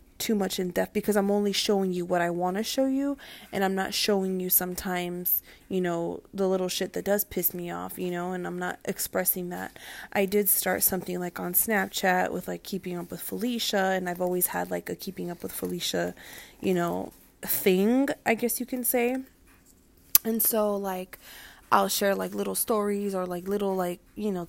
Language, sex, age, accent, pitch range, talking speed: English, female, 20-39, American, 180-210 Hz, 205 wpm